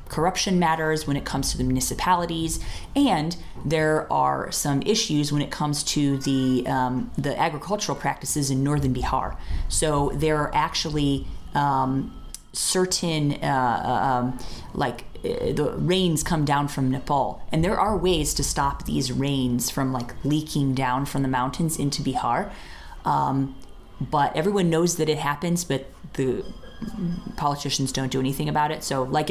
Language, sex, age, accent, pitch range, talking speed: English, female, 30-49, American, 135-160 Hz, 155 wpm